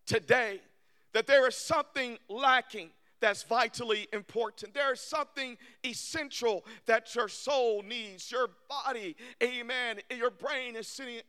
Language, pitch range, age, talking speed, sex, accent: English, 225-265 Hz, 50-69, 130 wpm, male, American